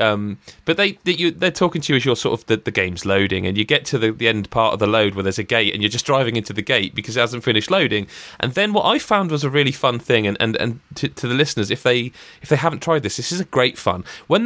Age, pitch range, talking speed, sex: 30-49, 110-165 Hz, 305 wpm, male